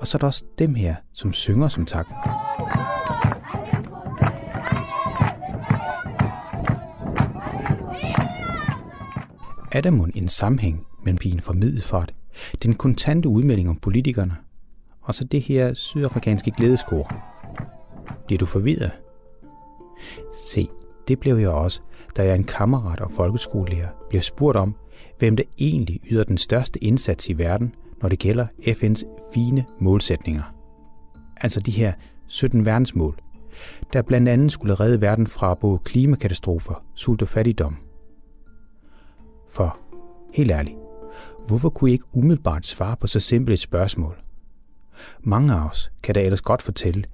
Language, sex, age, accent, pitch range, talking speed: Danish, male, 30-49, native, 85-120 Hz, 130 wpm